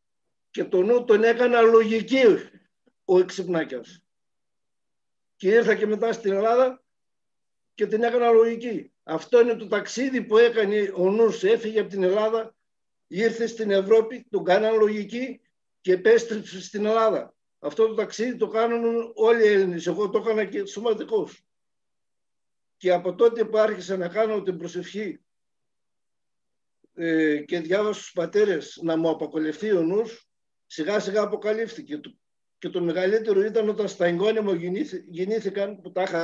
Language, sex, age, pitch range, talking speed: Greek, male, 60-79, 185-230 Hz, 145 wpm